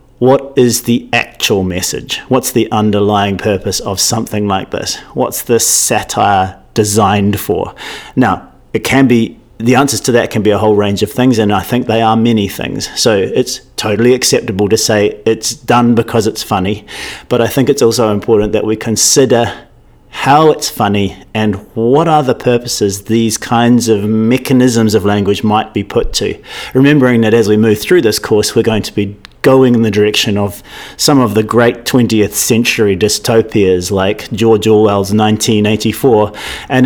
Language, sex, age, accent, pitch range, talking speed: English, male, 40-59, Australian, 105-120 Hz, 175 wpm